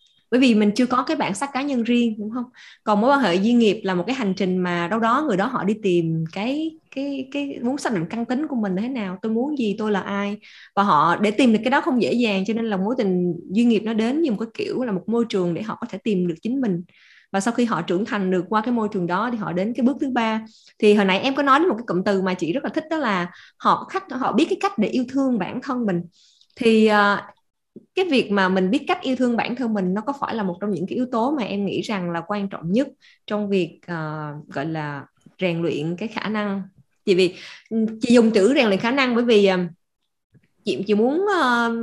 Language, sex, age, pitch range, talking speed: Vietnamese, female, 20-39, 185-250 Hz, 275 wpm